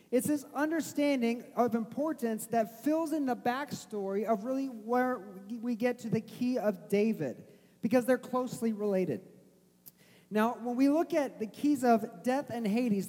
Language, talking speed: English, 160 wpm